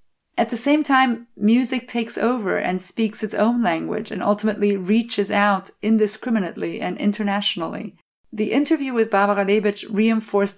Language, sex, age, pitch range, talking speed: English, female, 30-49, 185-220 Hz, 140 wpm